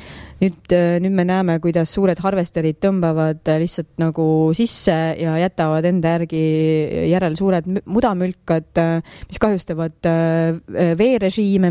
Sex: female